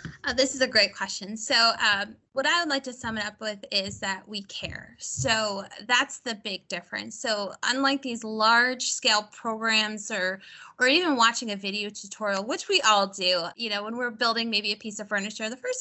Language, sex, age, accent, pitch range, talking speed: English, female, 20-39, American, 205-255 Hz, 210 wpm